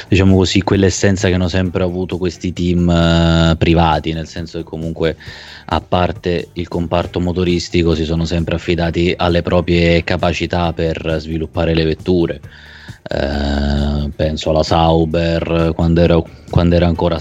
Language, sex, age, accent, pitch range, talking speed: Italian, male, 30-49, native, 80-90 Hz, 140 wpm